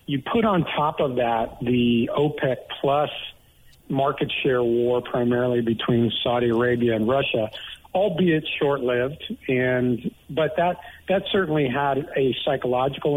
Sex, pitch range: male, 125-140 Hz